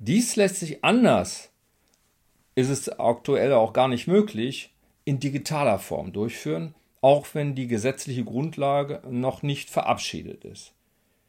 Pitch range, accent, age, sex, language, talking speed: 110-180 Hz, German, 50-69, male, German, 130 wpm